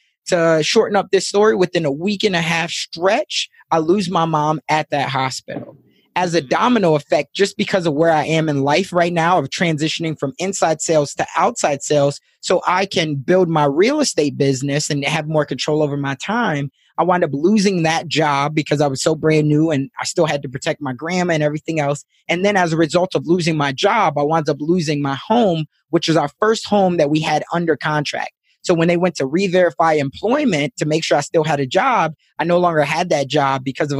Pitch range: 145-175 Hz